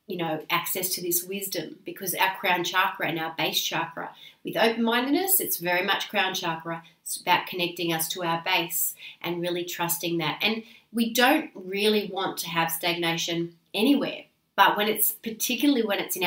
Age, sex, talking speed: 30-49, female, 175 wpm